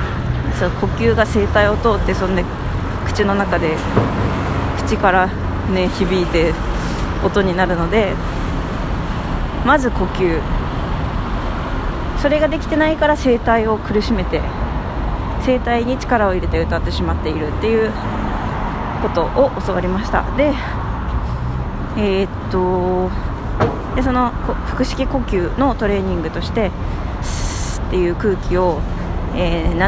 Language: Japanese